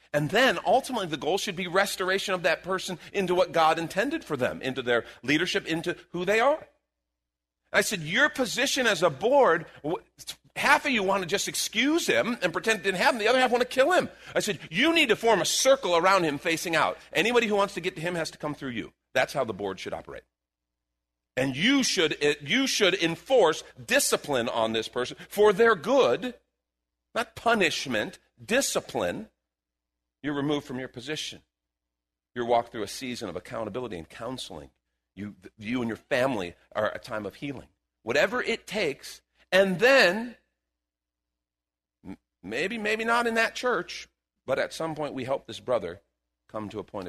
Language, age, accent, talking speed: English, 40-59, American, 180 wpm